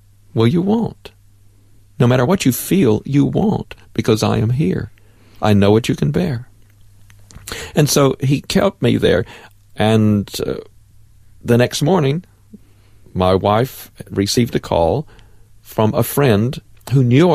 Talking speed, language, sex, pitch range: 140 wpm, English, male, 105-130 Hz